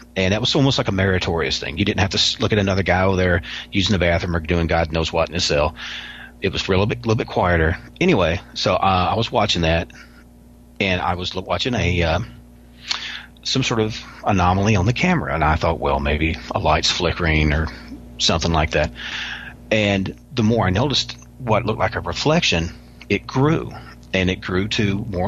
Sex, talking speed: male, 205 wpm